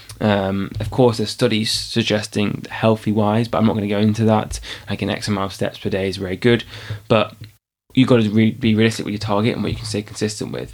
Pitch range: 105-120 Hz